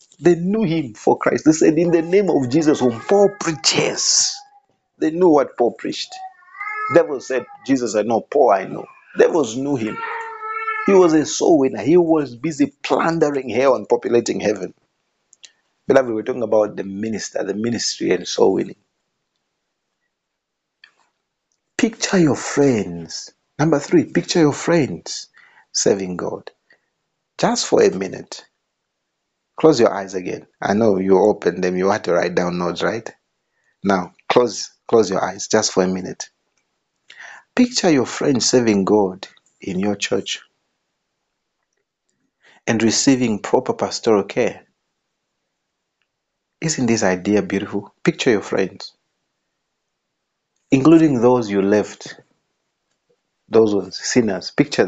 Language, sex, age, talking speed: English, male, 50-69, 135 wpm